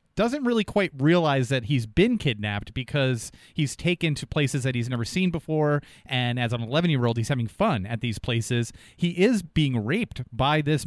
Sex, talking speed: male, 200 wpm